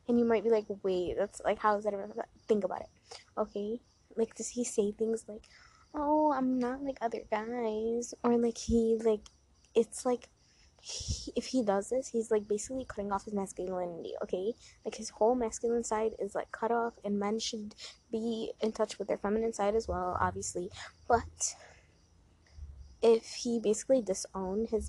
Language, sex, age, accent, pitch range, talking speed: English, female, 20-39, American, 205-235 Hz, 180 wpm